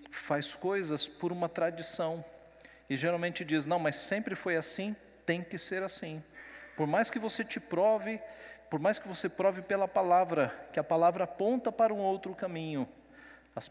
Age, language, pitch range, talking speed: 40-59, Portuguese, 150-195 Hz, 170 wpm